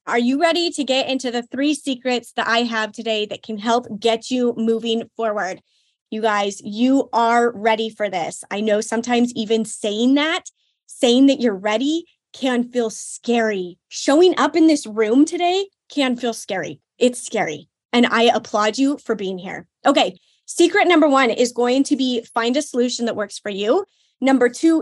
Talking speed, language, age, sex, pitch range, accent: 180 wpm, English, 20-39, female, 215-265 Hz, American